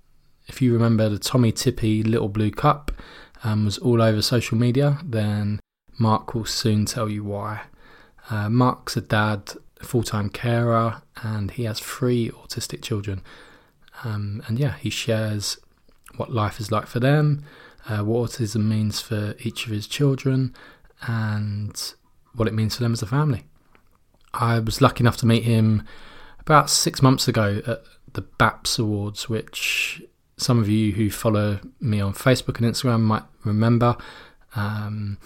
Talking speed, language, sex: 160 wpm, English, male